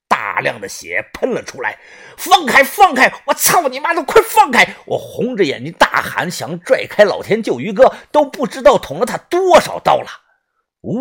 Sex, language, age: male, Chinese, 50-69